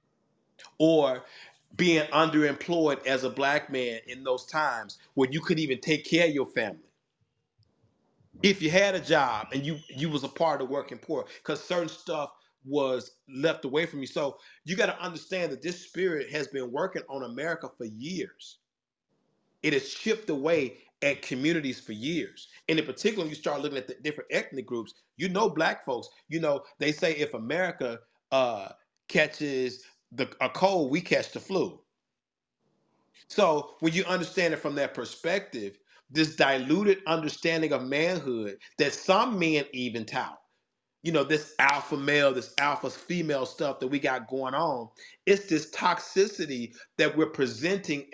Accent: American